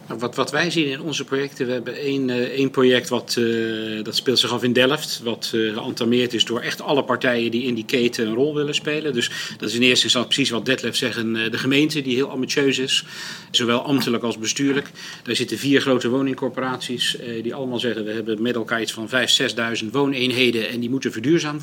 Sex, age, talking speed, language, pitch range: male, 40-59, 215 wpm, English, 120-145 Hz